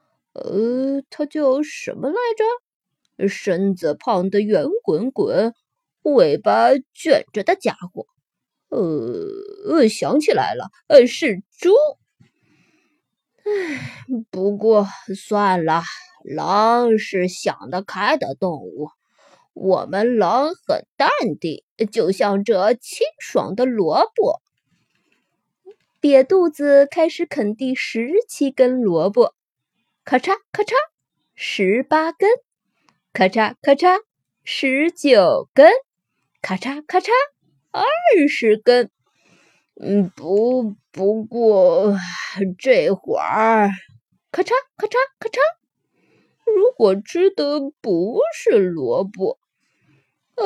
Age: 20-39